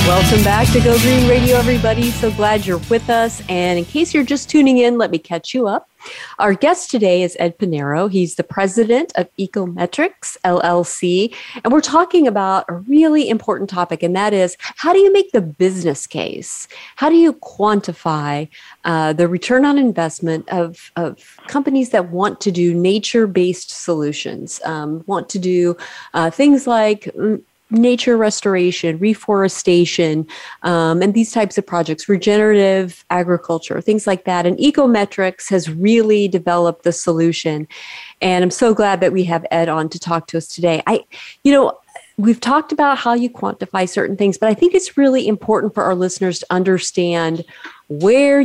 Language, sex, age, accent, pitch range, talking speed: English, female, 30-49, American, 170-230 Hz, 170 wpm